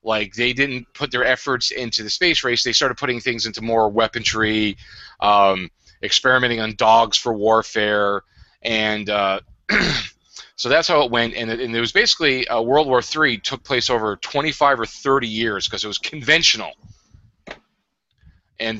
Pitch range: 100-120 Hz